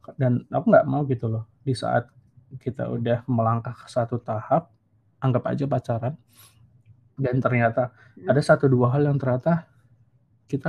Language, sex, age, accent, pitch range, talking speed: Indonesian, male, 20-39, native, 120-145 Hz, 145 wpm